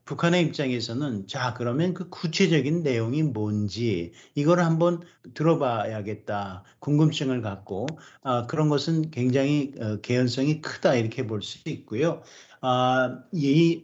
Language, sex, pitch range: Korean, male, 110-155 Hz